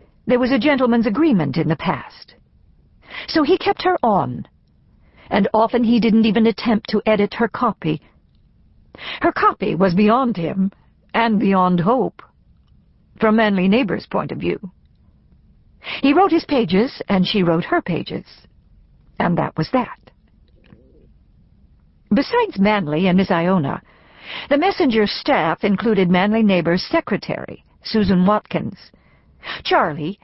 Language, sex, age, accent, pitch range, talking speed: English, female, 60-79, American, 170-245 Hz, 130 wpm